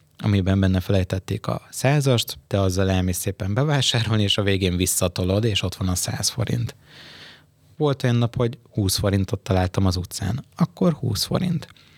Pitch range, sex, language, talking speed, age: 95-120 Hz, male, Hungarian, 155 wpm, 20-39